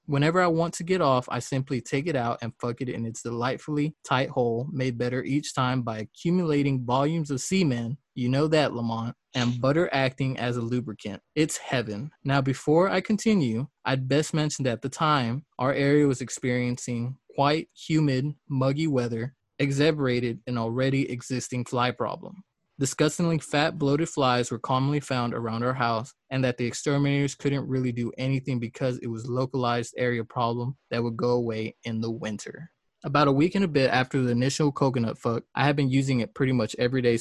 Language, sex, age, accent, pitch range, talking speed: English, male, 20-39, American, 120-145 Hz, 190 wpm